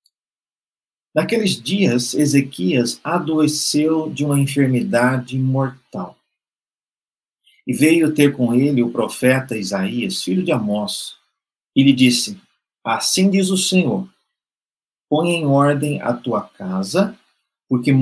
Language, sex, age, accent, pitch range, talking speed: Portuguese, male, 50-69, Brazilian, 120-160 Hz, 110 wpm